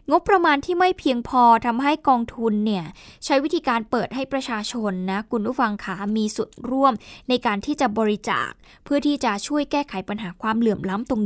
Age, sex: 10-29, female